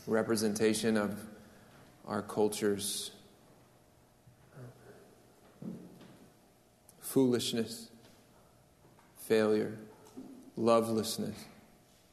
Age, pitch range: 40-59, 100-120 Hz